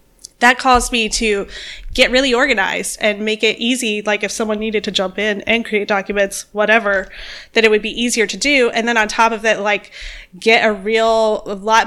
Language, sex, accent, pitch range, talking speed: English, female, American, 205-240 Hz, 205 wpm